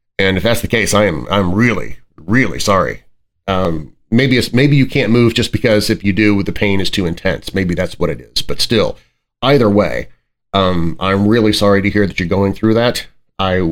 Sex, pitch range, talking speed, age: male, 100-120 Hz, 215 wpm, 30-49